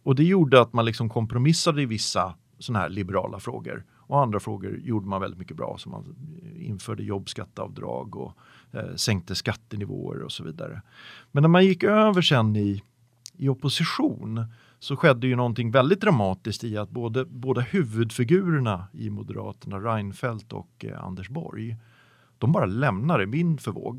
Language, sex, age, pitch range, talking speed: Swedish, male, 40-59, 110-150 Hz, 160 wpm